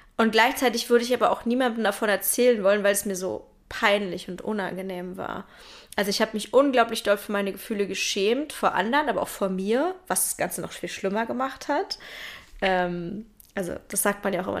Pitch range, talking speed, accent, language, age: 195-230 Hz, 205 wpm, German, German, 20-39